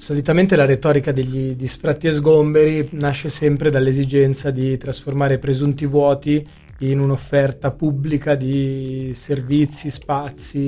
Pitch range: 135-150 Hz